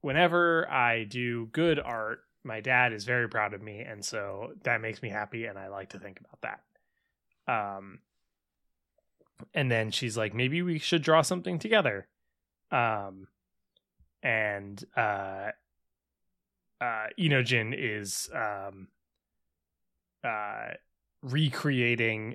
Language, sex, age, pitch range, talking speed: English, male, 20-39, 95-125 Hz, 120 wpm